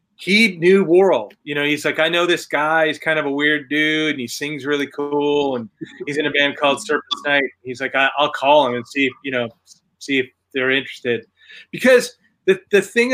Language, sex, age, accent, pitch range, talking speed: English, male, 30-49, American, 150-200 Hz, 225 wpm